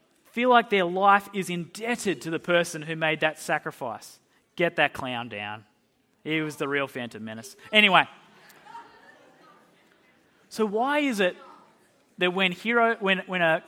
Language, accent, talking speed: English, Australian, 150 wpm